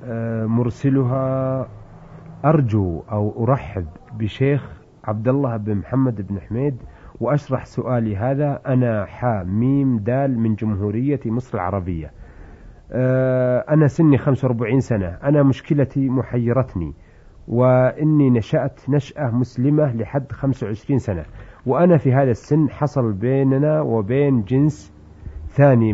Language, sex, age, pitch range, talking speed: Arabic, male, 50-69, 115-140 Hz, 105 wpm